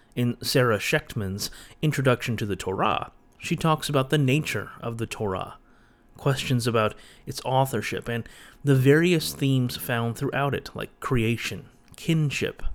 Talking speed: 135 wpm